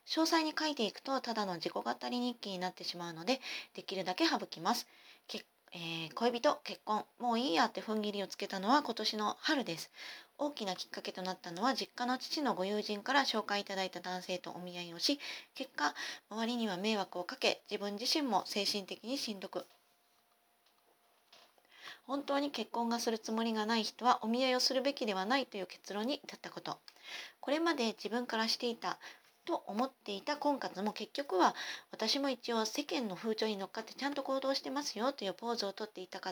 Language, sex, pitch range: Japanese, female, 195-265 Hz